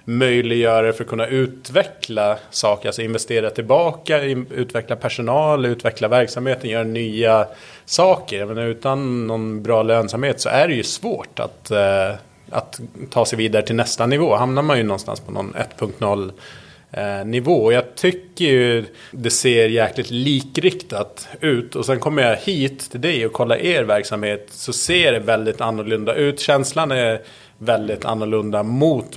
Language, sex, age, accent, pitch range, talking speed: Swedish, male, 30-49, Norwegian, 110-130 Hz, 145 wpm